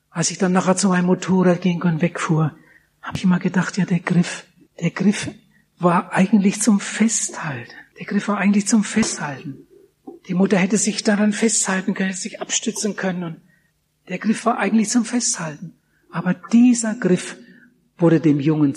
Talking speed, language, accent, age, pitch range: 170 wpm, German, German, 60-79, 170-255 Hz